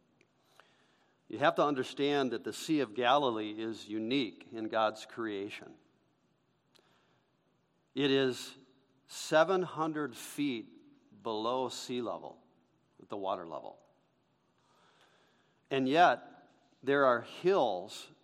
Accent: American